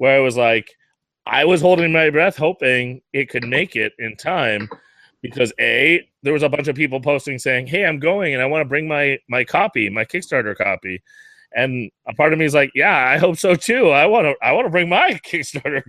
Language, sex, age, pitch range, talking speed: English, male, 30-49, 120-155 Hz, 230 wpm